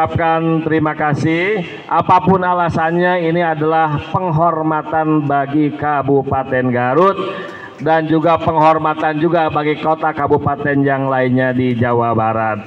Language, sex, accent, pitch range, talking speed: Indonesian, male, native, 140-170 Hz, 105 wpm